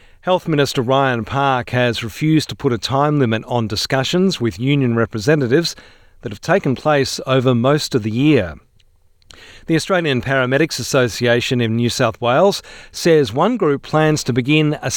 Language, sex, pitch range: English, male, 120-155 Hz